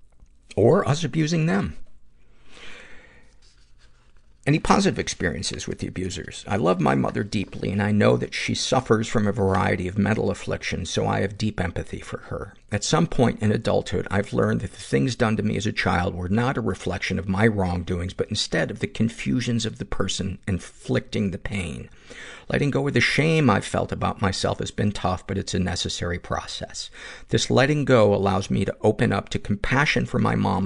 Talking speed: 190 wpm